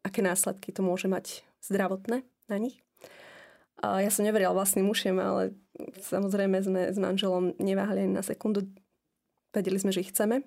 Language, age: Slovak, 20-39